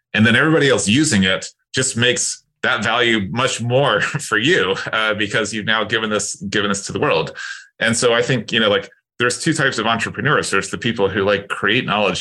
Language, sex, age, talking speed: English, male, 30-49, 215 wpm